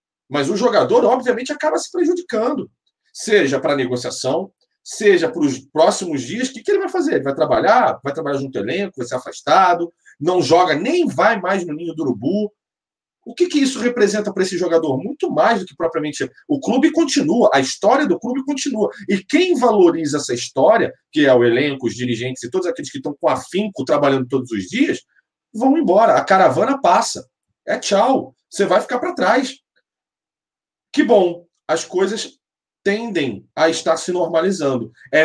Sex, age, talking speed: male, 40-59, 180 wpm